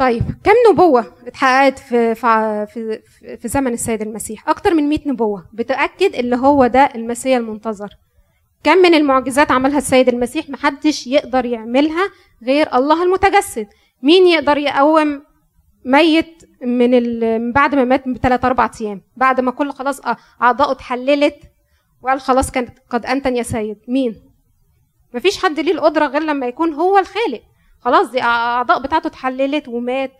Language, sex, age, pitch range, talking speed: Arabic, female, 20-39, 245-310 Hz, 145 wpm